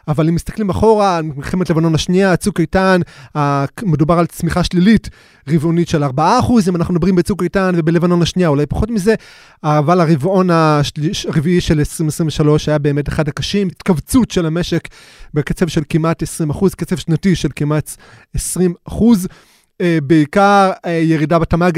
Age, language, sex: 20-39, Hebrew, male